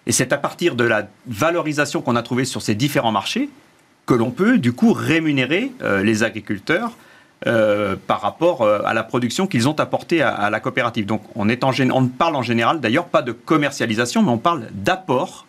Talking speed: 200 wpm